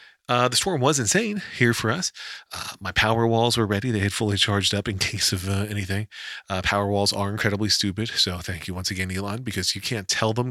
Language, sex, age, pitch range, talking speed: English, male, 40-59, 90-115 Hz, 235 wpm